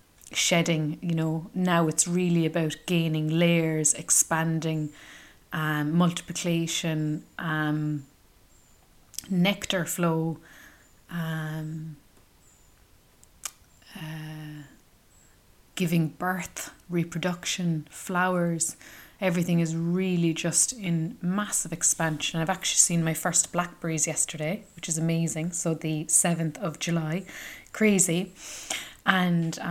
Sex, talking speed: female, 90 wpm